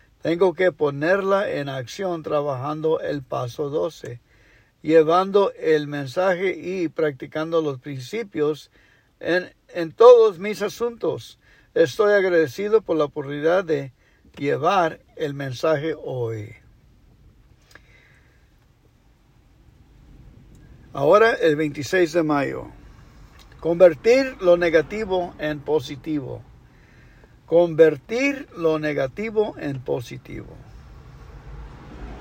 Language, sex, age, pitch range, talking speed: English, male, 60-79, 150-200 Hz, 85 wpm